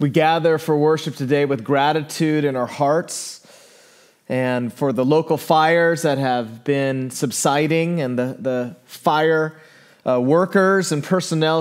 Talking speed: 140 wpm